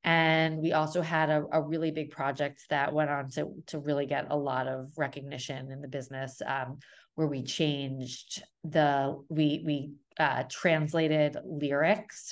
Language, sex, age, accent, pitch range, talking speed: English, female, 30-49, American, 145-175 Hz, 160 wpm